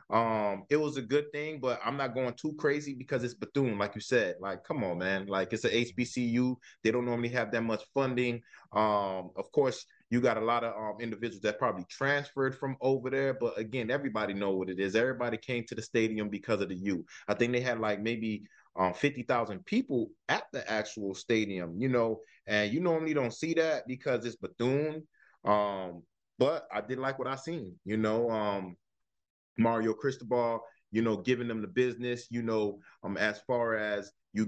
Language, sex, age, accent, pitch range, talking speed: English, male, 20-39, American, 105-135 Hz, 200 wpm